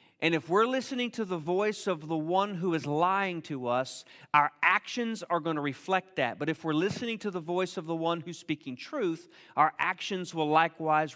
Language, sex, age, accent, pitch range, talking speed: English, male, 40-59, American, 160-220 Hz, 210 wpm